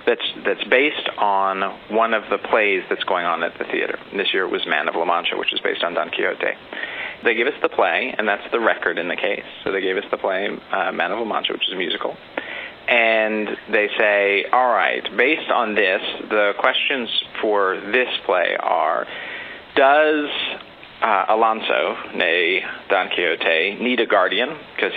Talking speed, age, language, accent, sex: 190 wpm, 40-59, English, American, male